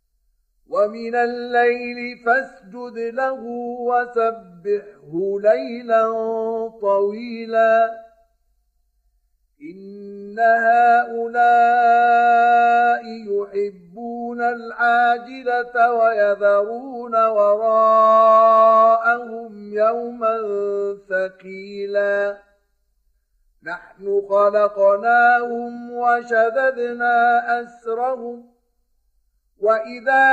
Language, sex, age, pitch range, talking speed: Arabic, male, 50-69, 200-235 Hz, 40 wpm